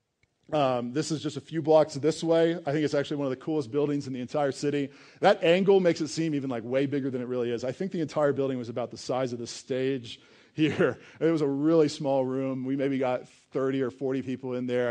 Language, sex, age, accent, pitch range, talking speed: English, male, 40-59, American, 130-155 Hz, 255 wpm